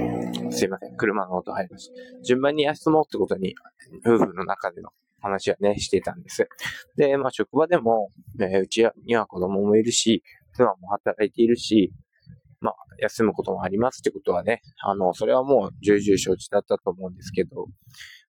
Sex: male